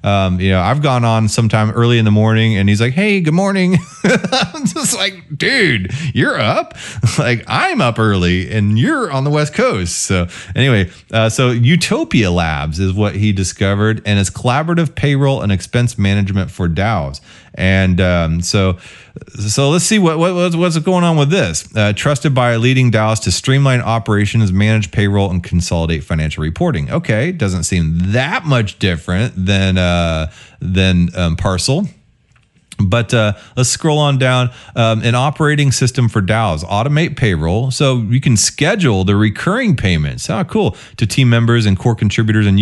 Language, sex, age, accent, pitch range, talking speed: English, male, 30-49, American, 100-130 Hz, 170 wpm